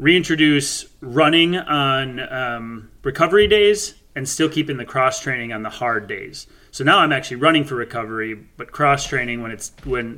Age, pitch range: 30-49, 115-145 Hz